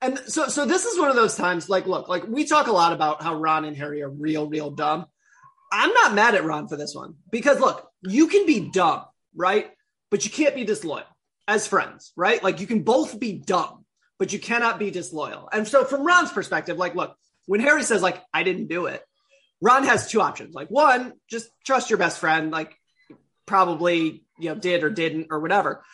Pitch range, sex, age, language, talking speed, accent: 180-270 Hz, male, 20-39, English, 215 wpm, American